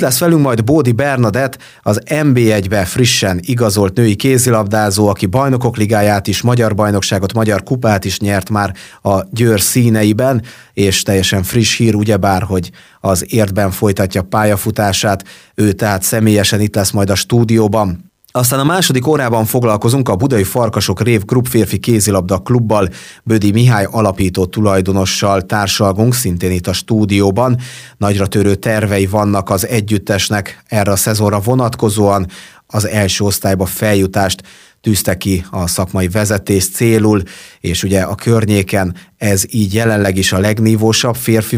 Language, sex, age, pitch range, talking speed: Hungarian, male, 30-49, 95-115 Hz, 140 wpm